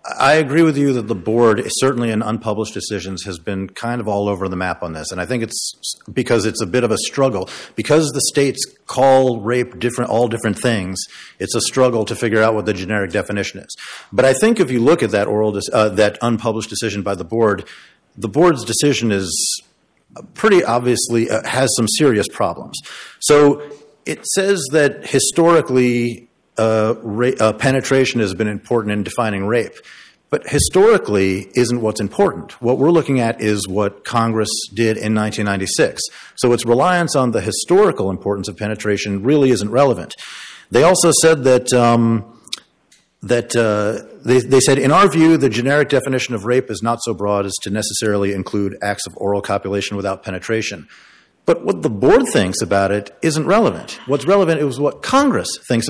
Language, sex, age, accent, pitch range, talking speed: English, male, 50-69, American, 105-130 Hz, 185 wpm